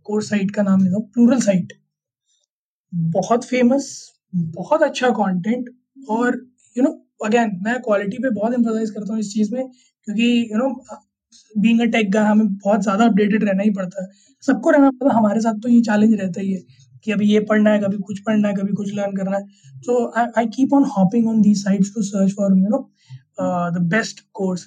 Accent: native